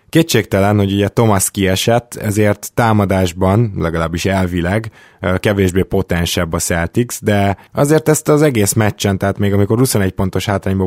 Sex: male